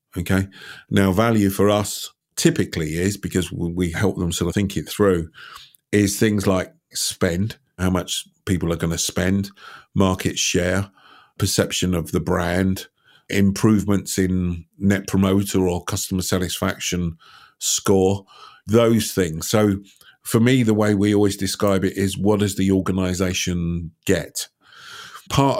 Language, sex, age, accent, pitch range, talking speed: English, male, 50-69, British, 95-105 Hz, 140 wpm